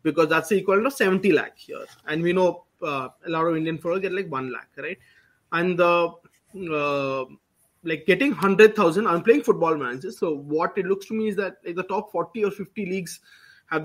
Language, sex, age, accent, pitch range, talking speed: English, male, 20-39, Indian, 155-210 Hz, 205 wpm